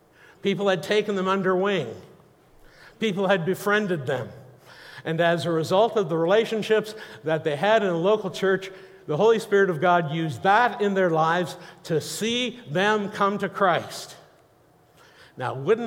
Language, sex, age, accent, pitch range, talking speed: English, male, 60-79, American, 160-200 Hz, 160 wpm